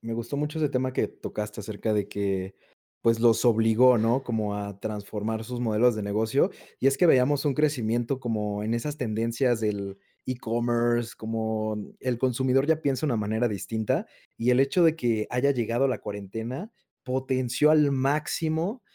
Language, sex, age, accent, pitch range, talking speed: Spanish, male, 20-39, Mexican, 110-135 Hz, 170 wpm